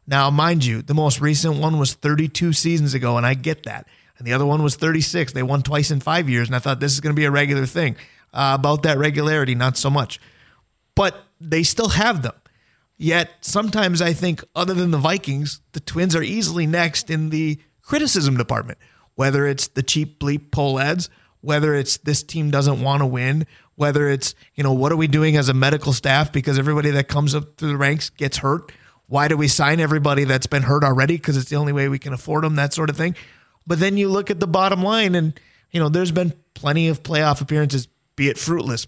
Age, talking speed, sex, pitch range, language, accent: 30-49, 225 wpm, male, 140-165 Hz, English, American